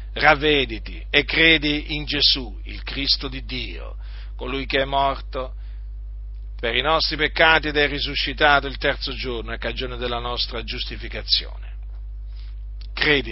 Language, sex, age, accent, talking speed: Italian, male, 50-69, native, 130 wpm